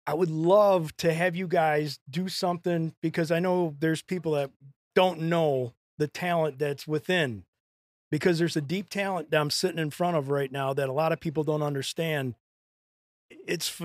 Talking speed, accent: 180 wpm, American